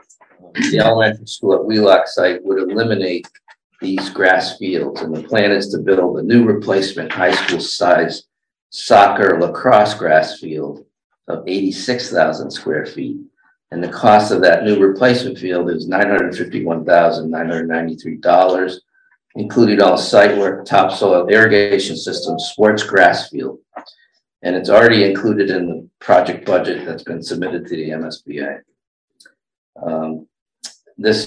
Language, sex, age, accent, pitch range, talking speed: English, male, 50-69, American, 90-110 Hz, 125 wpm